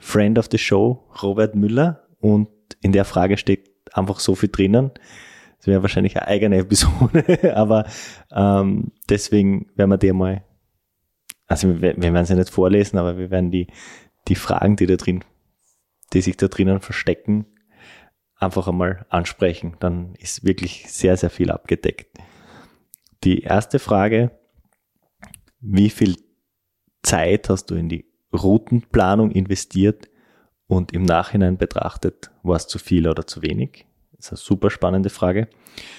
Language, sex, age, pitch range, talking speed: German, male, 20-39, 90-105 Hz, 145 wpm